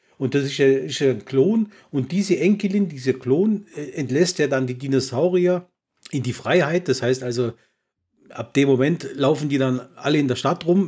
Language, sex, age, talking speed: German, male, 40-59, 180 wpm